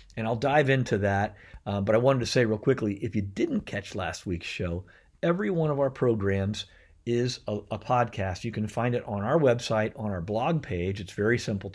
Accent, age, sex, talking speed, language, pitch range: American, 50-69, male, 220 wpm, English, 100-130 Hz